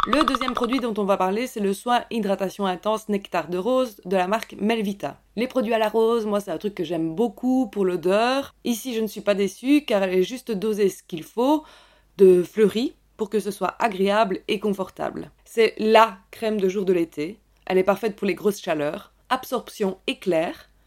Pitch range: 200-240 Hz